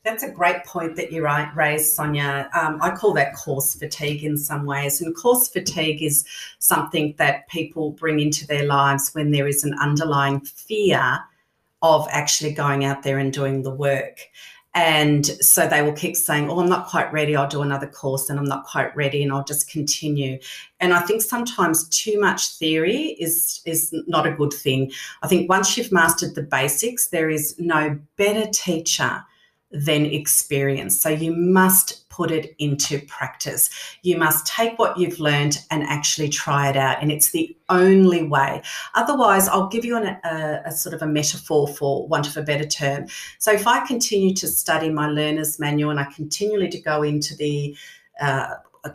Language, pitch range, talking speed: English, 145-175 Hz, 185 wpm